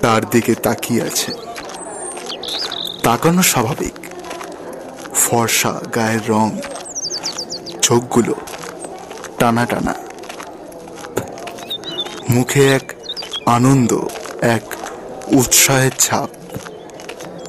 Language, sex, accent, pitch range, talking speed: Bengali, male, native, 115-130 Hz, 60 wpm